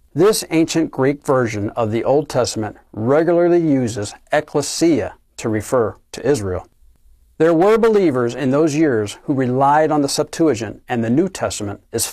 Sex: male